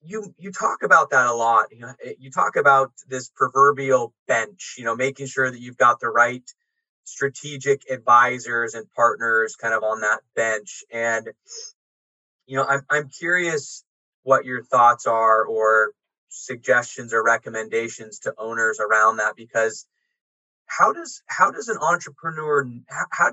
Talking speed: 150 wpm